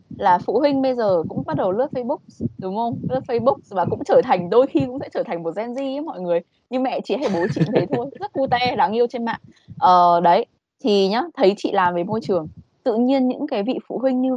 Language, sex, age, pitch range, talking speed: Vietnamese, female, 20-39, 180-255 Hz, 260 wpm